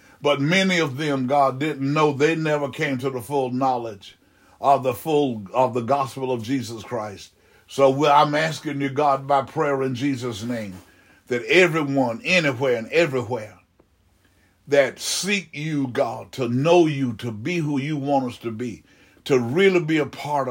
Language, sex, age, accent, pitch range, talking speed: English, male, 60-79, American, 120-145 Hz, 170 wpm